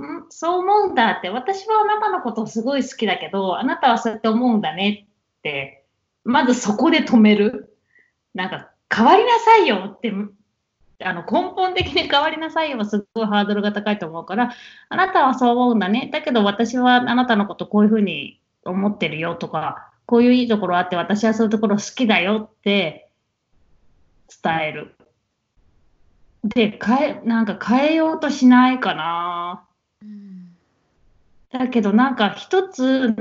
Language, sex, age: Japanese, female, 20-39